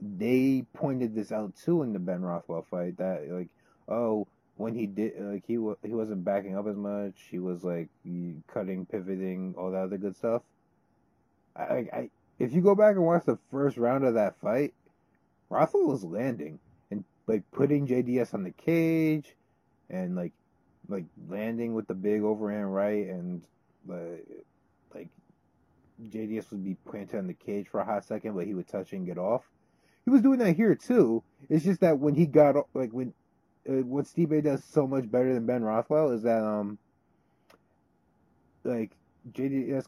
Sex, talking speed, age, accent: male, 180 wpm, 30-49, American